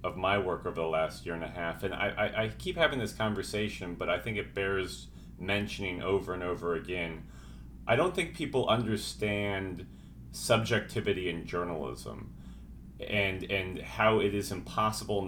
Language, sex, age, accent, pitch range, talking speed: English, male, 30-49, American, 90-110 Hz, 165 wpm